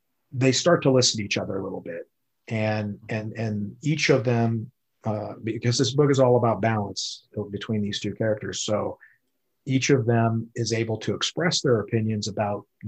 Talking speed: 180 wpm